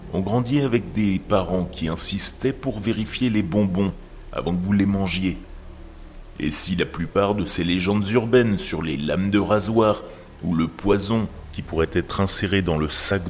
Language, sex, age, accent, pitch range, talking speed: French, male, 30-49, French, 90-110 Hz, 175 wpm